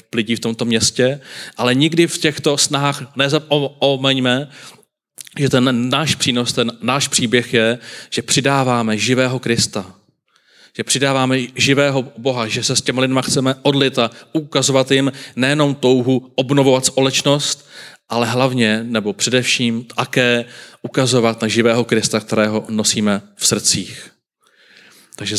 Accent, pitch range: native, 110-135 Hz